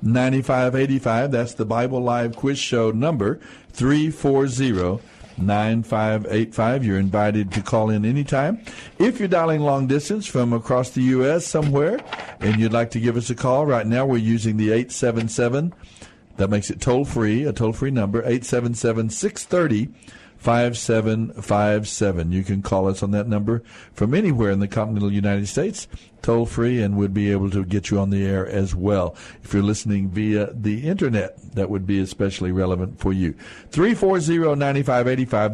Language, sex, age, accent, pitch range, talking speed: English, male, 60-79, American, 105-135 Hz, 180 wpm